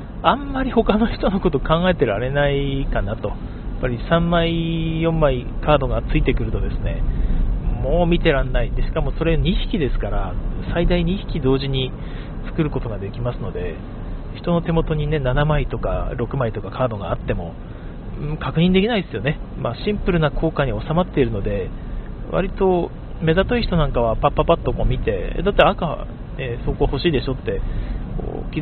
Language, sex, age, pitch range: Japanese, male, 40-59, 115-165 Hz